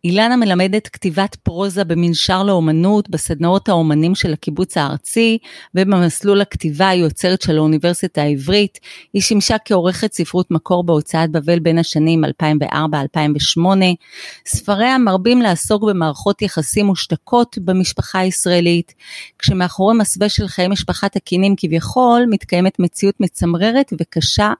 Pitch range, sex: 165-200 Hz, female